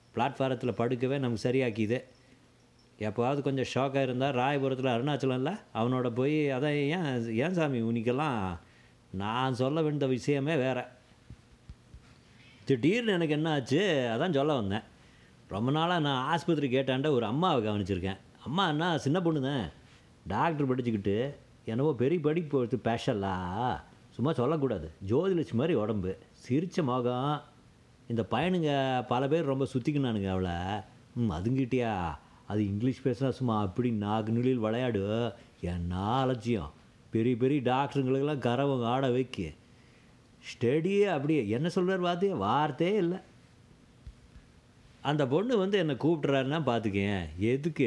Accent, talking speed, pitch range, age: native, 120 wpm, 115-150 Hz, 30-49